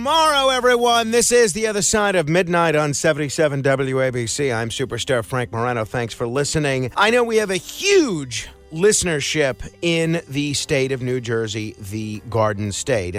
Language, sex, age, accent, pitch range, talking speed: English, male, 40-59, American, 120-175 Hz, 160 wpm